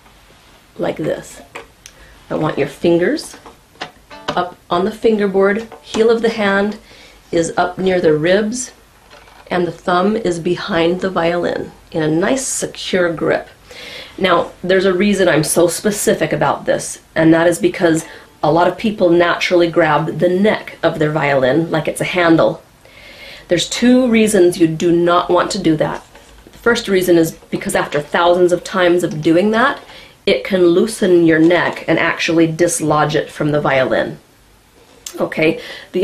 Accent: American